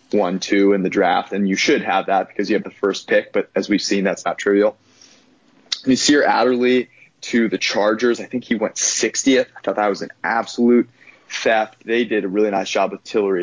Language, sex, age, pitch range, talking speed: English, male, 20-39, 100-125 Hz, 210 wpm